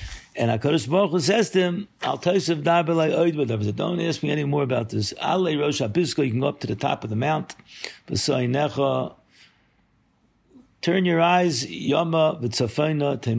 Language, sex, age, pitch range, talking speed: English, male, 50-69, 120-155 Hz, 110 wpm